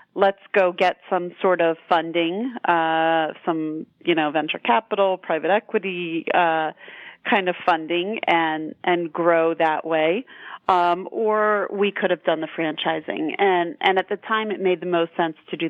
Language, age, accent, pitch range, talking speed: English, 30-49, American, 160-195 Hz, 170 wpm